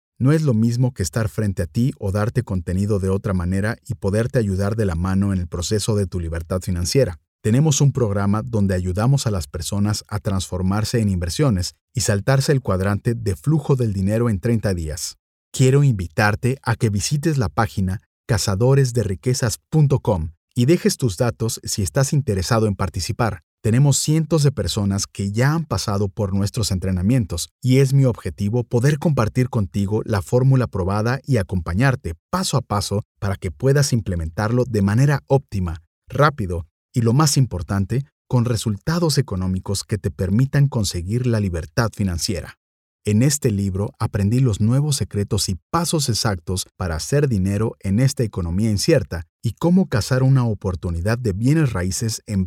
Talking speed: 160 wpm